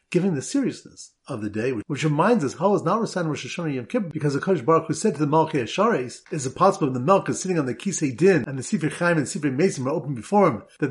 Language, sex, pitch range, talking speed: English, male, 130-185 Hz, 275 wpm